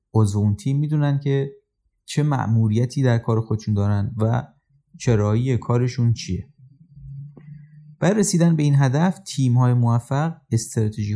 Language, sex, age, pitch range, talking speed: Persian, male, 30-49, 105-140 Hz, 120 wpm